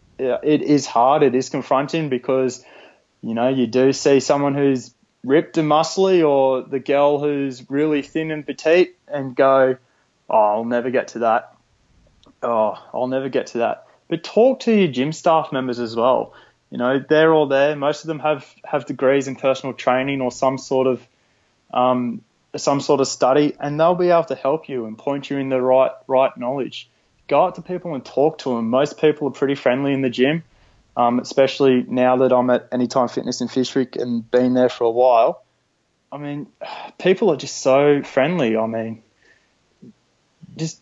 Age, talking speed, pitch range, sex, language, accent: 20-39, 190 wpm, 125-150 Hz, male, English, Australian